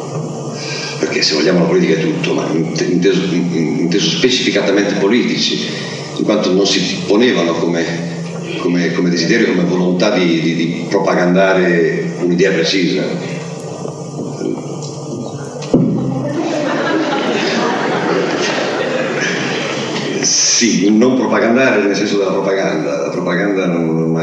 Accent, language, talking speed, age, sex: native, Italian, 95 wpm, 50-69, male